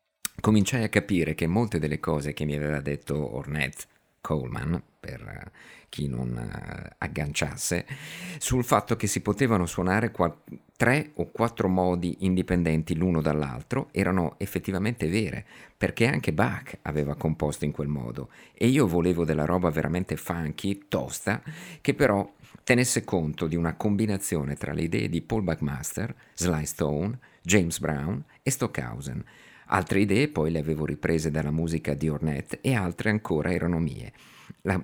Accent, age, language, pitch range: native, 50-69, Italian, 75-105 Hz